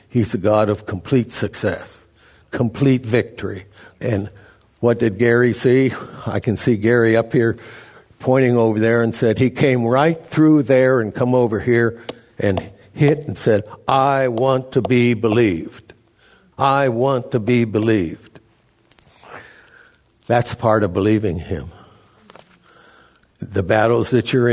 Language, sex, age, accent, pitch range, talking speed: English, male, 60-79, American, 100-120 Hz, 135 wpm